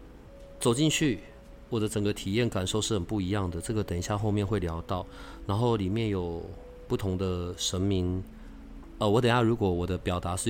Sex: male